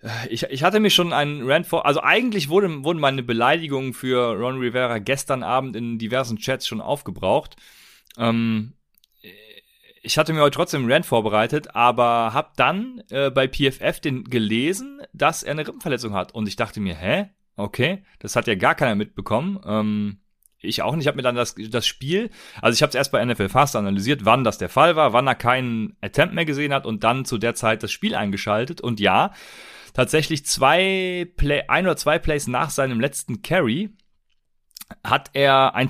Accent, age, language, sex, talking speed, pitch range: German, 30-49, German, male, 190 wpm, 115-150 Hz